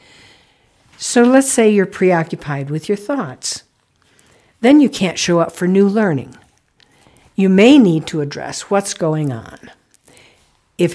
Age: 60-79